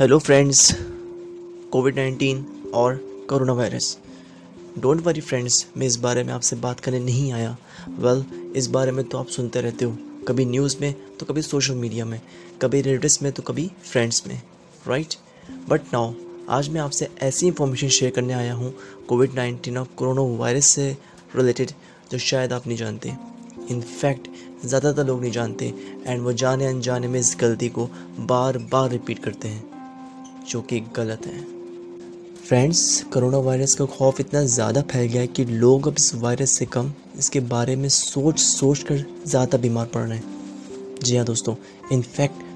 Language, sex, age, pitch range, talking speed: Hindi, male, 20-39, 120-140 Hz, 165 wpm